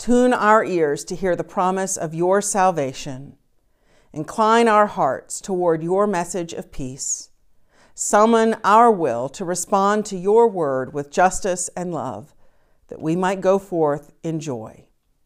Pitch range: 165-225 Hz